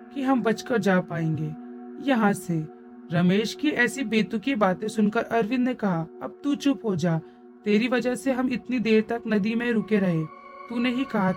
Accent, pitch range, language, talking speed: native, 180-240 Hz, Hindi, 185 wpm